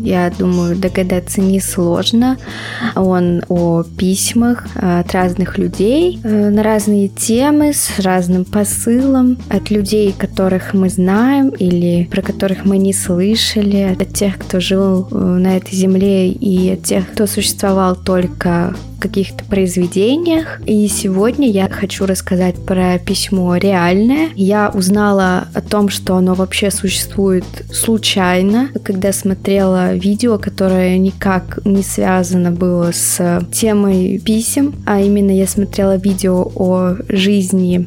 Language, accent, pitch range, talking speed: Russian, native, 185-205 Hz, 120 wpm